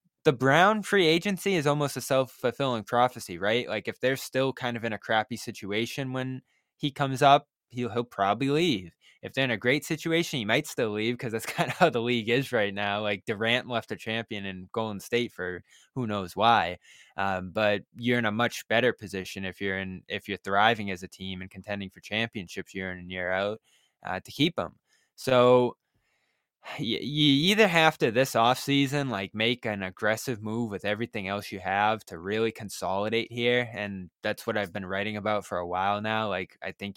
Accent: American